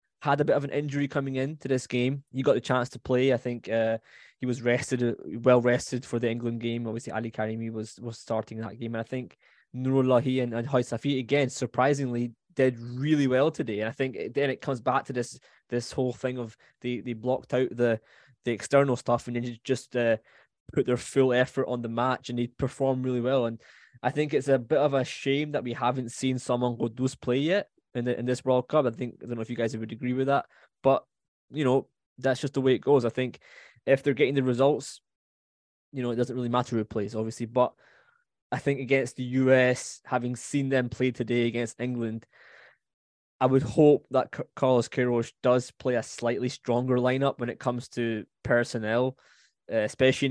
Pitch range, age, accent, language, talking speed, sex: 120-135 Hz, 10-29, British, English, 215 wpm, male